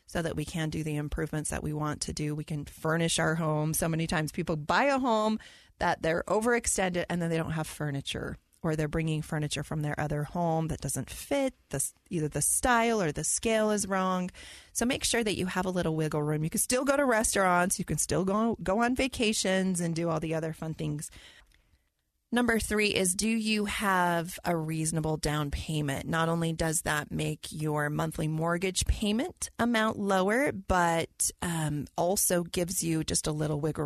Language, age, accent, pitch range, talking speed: English, 30-49, American, 150-185 Hz, 200 wpm